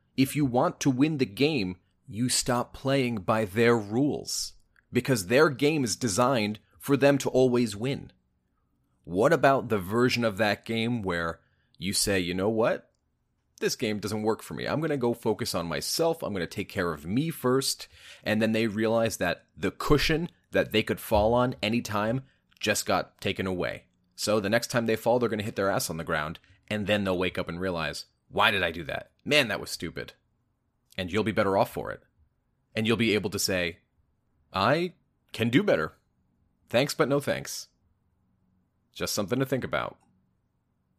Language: English